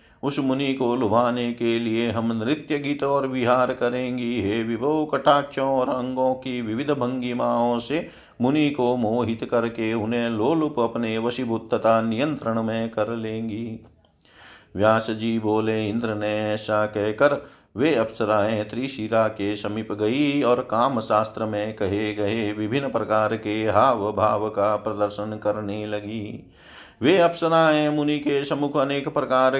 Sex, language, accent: male, Hindi, native